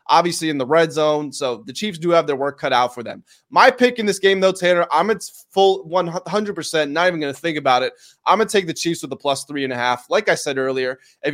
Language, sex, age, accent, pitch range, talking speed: English, male, 20-39, American, 150-195 Hz, 275 wpm